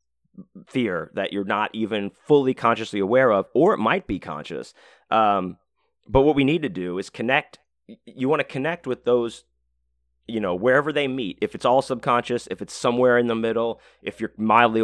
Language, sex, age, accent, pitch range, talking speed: English, male, 30-49, American, 100-130 Hz, 195 wpm